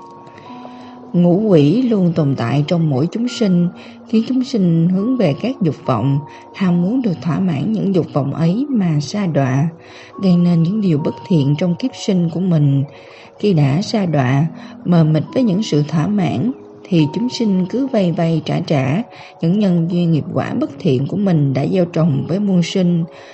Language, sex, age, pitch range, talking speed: Vietnamese, female, 20-39, 155-210 Hz, 190 wpm